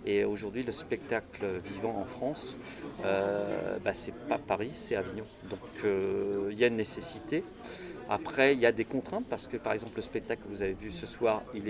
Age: 40-59